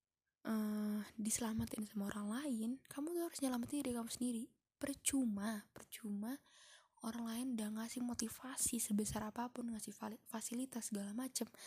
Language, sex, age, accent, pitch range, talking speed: Indonesian, female, 20-39, native, 220-255 Hz, 135 wpm